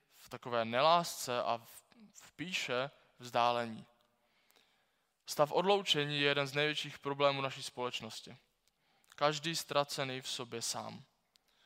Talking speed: 100 wpm